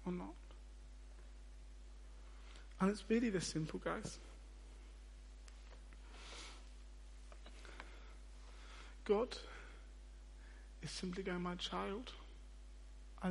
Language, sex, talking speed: English, male, 70 wpm